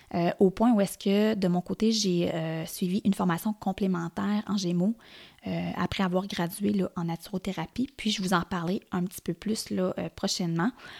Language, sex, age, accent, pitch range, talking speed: French, female, 20-39, Canadian, 180-210 Hz, 190 wpm